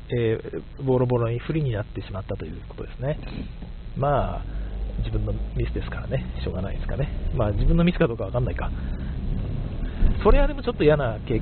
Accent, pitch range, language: native, 105-160 Hz, Japanese